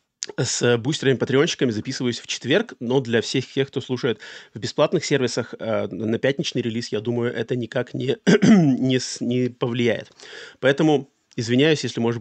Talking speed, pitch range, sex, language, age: 155 wpm, 120-140 Hz, male, Russian, 30-49